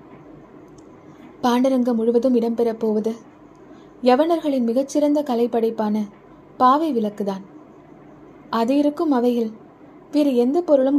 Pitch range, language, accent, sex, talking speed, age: 230-325 Hz, Tamil, native, female, 75 wpm, 20-39